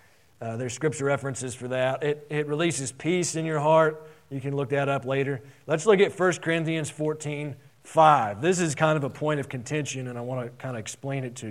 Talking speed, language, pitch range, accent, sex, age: 225 wpm, English, 140-175 Hz, American, male, 40-59